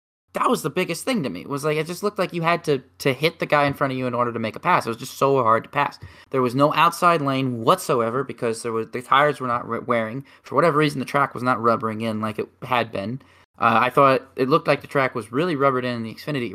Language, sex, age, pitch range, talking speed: English, male, 20-39, 115-180 Hz, 295 wpm